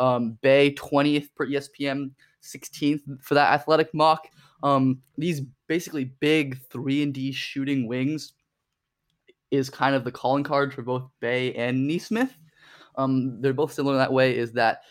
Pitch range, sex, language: 125-145 Hz, male, English